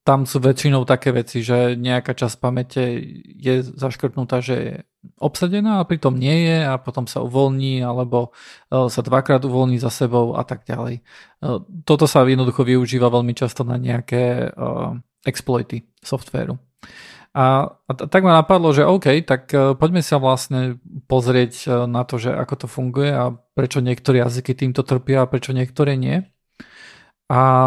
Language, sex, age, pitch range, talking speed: Slovak, male, 40-59, 125-155 Hz, 150 wpm